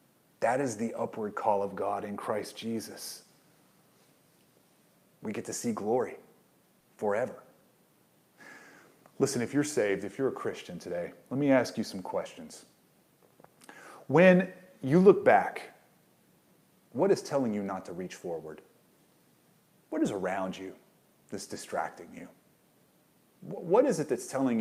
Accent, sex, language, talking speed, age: American, male, English, 135 wpm, 30-49